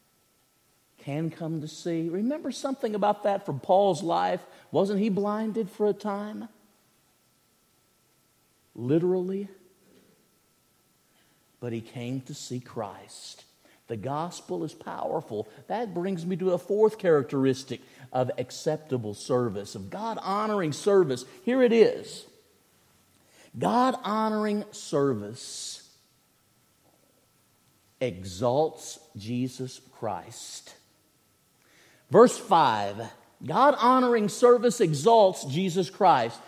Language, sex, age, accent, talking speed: English, male, 50-69, American, 95 wpm